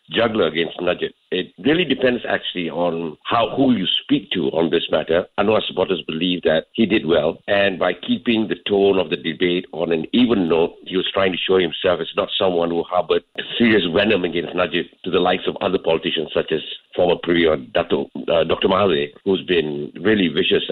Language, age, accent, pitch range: English, 60-79, Malaysian, 90-130 Hz